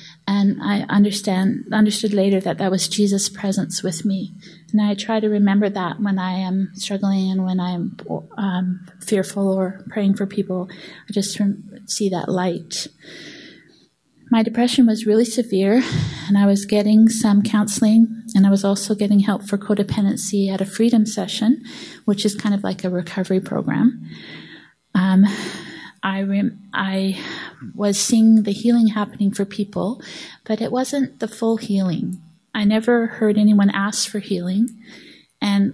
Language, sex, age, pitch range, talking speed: English, female, 30-49, 190-220 Hz, 155 wpm